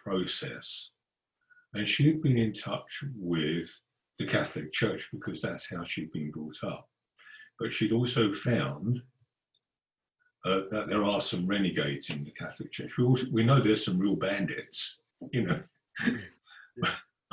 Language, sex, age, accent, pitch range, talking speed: Dutch, male, 50-69, British, 95-125 Hz, 145 wpm